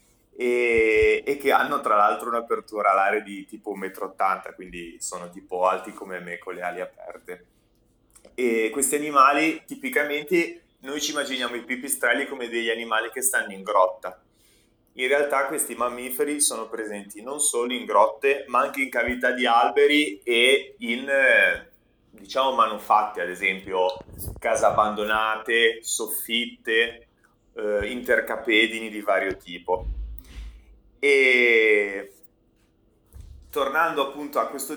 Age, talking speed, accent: 30-49, 125 wpm, native